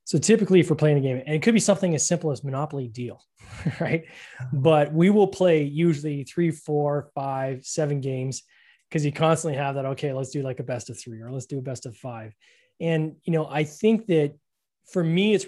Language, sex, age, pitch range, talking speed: English, male, 20-39, 130-160 Hz, 220 wpm